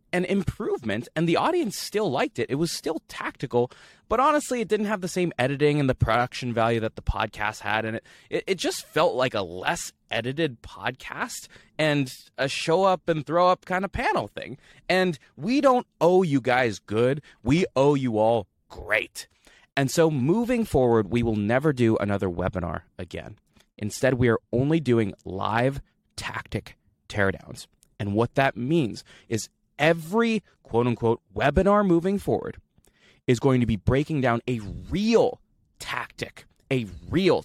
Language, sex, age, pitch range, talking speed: English, male, 20-39, 115-180 Hz, 165 wpm